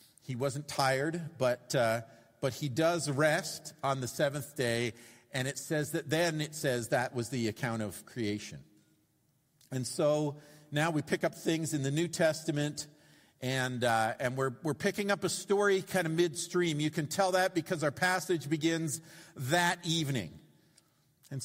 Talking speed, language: 170 wpm, English